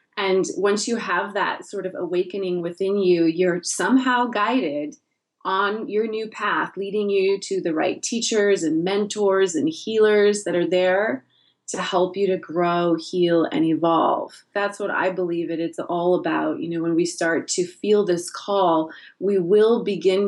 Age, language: 30-49, English